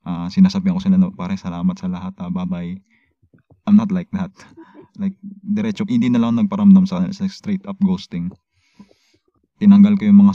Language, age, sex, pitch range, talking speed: Filipino, 20-39, male, 190-205 Hz, 170 wpm